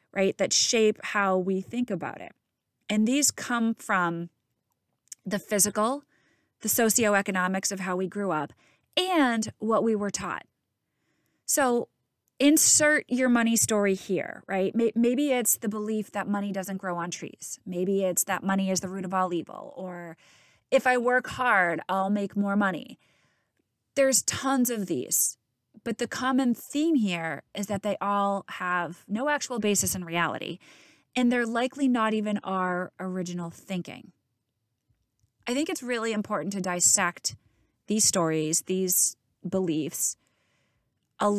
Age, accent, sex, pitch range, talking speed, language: 20-39, American, female, 175-230 Hz, 145 wpm, English